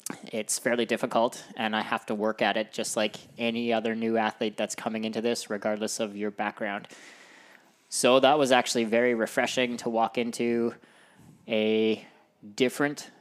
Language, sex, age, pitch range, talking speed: English, male, 20-39, 110-125 Hz, 160 wpm